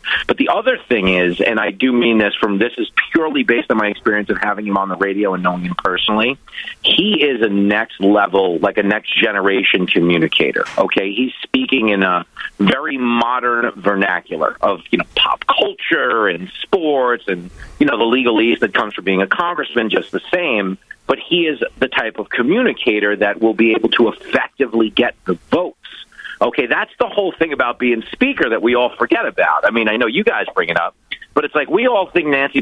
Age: 40-59